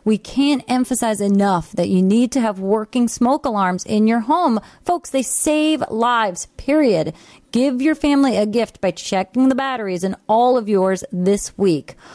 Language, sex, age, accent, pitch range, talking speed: English, female, 30-49, American, 190-260 Hz, 175 wpm